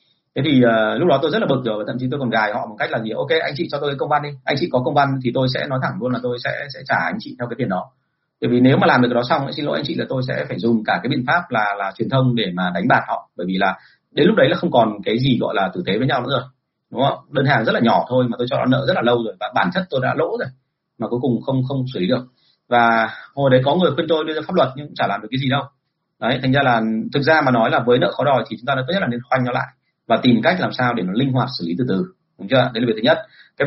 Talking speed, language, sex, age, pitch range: 350 wpm, Vietnamese, male, 30-49, 115-140 Hz